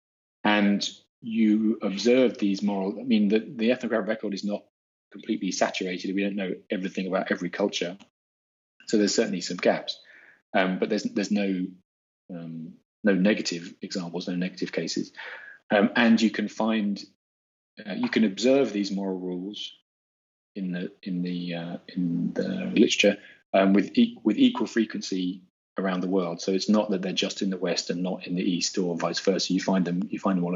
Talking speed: 180 wpm